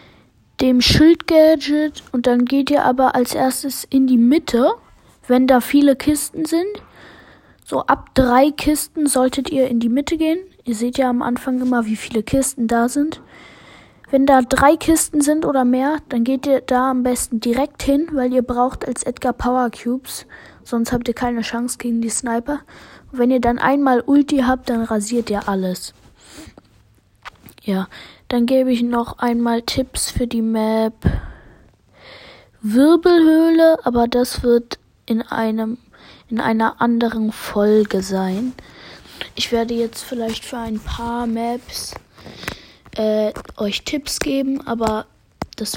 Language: German